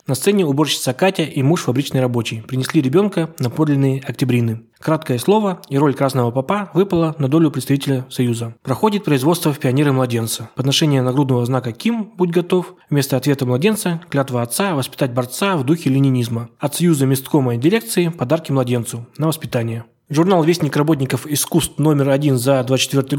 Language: Russian